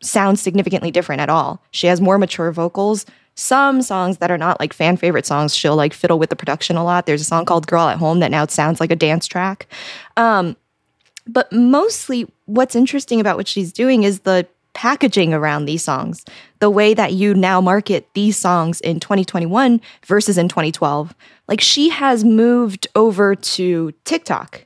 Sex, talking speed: female, 185 wpm